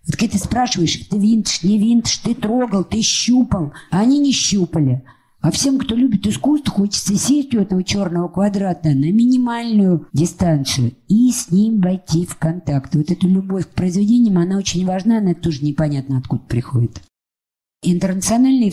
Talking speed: 160 wpm